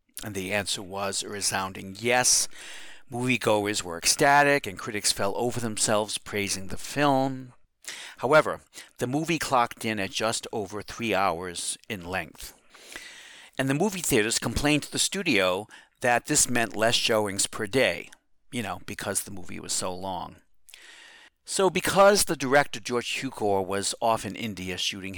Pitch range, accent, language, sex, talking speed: 95-125 Hz, American, English, male, 155 wpm